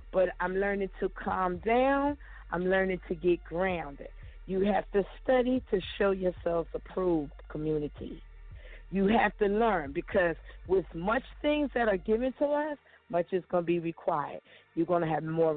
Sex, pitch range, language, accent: female, 170-220 Hz, English, American